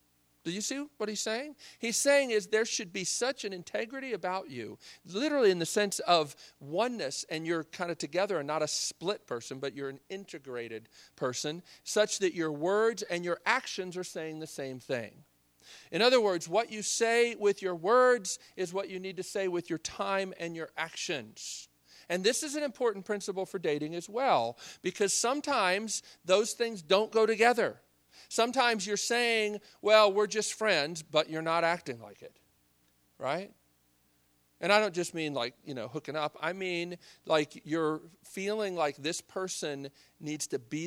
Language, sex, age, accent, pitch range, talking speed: English, male, 40-59, American, 140-210 Hz, 180 wpm